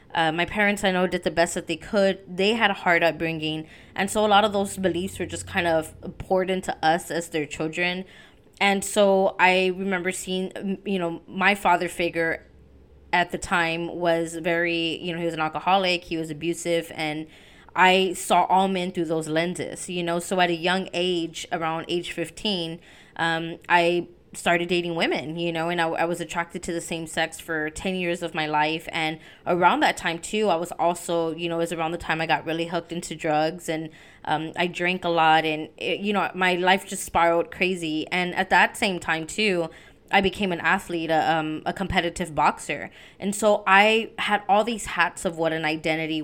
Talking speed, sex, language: 205 wpm, female, English